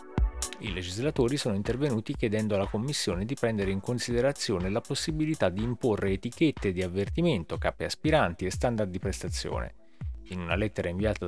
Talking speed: 150 wpm